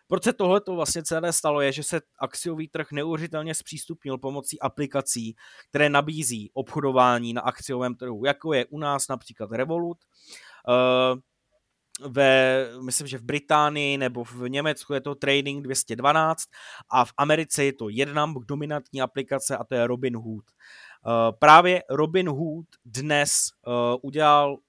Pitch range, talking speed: 130-155 Hz, 130 wpm